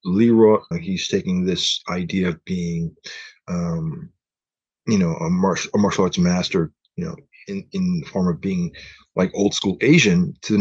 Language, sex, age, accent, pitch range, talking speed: English, male, 30-49, American, 100-155 Hz, 175 wpm